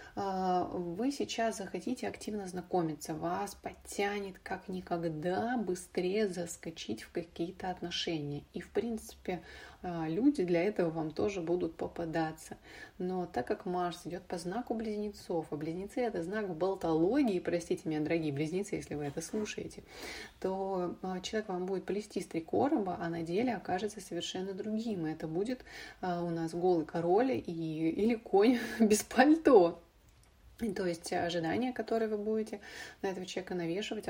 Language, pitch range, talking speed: Russian, 170-210 Hz, 140 wpm